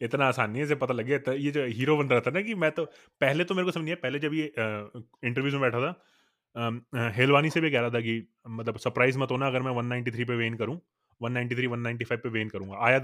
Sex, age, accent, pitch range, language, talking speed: male, 30-49, native, 115-150 Hz, Hindi, 240 wpm